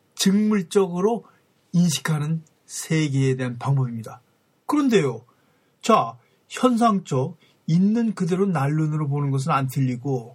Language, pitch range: Korean, 135-190 Hz